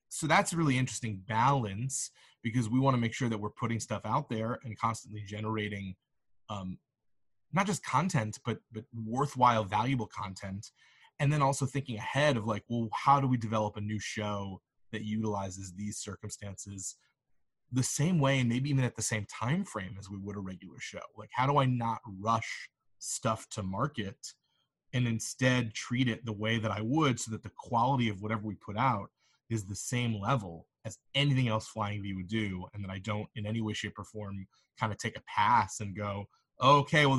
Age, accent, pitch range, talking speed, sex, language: 30-49, American, 105-130 Hz, 200 wpm, male, English